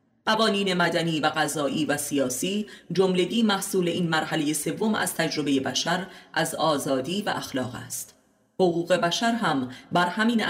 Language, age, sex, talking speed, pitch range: Persian, 30-49, female, 135 wpm, 145-190 Hz